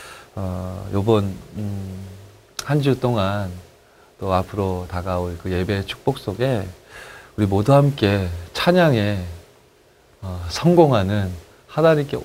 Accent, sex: native, male